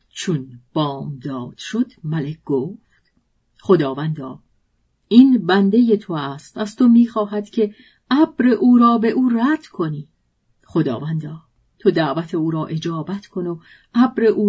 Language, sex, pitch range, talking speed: Persian, female, 160-225 Hz, 135 wpm